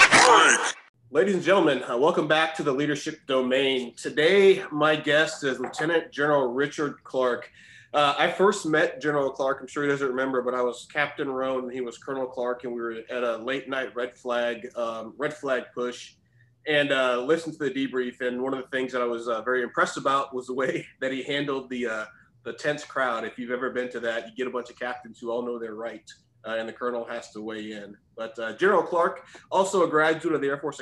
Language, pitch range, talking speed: English, 120-145 Hz, 230 wpm